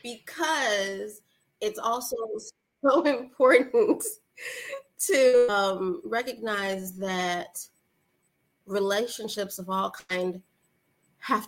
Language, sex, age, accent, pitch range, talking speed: English, female, 20-39, American, 180-220 Hz, 75 wpm